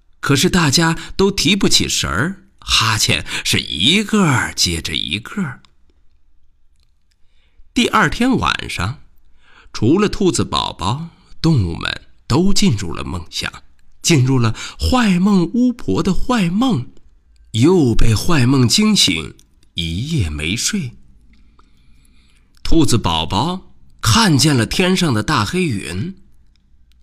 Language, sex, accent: Chinese, male, native